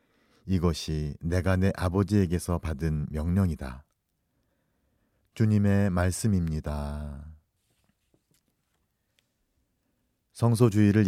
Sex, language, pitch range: male, Korean, 80-100 Hz